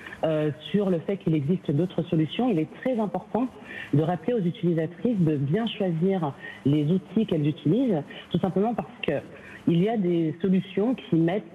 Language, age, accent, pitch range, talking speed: French, 50-69, French, 155-190 Hz, 170 wpm